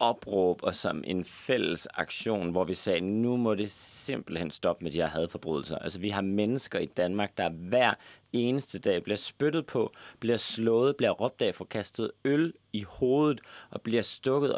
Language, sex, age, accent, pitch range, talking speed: Danish, male, 30-49, native, 95-130 Hz, 180 wpm